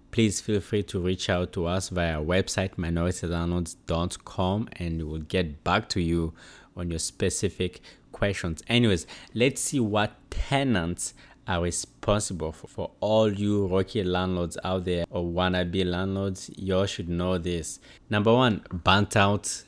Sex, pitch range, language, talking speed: male, 90-115 Hz, English, 150 wpm